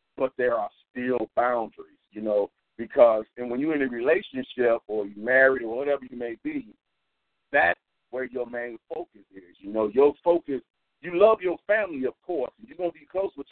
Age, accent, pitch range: 50-69, American, 125-165 Hz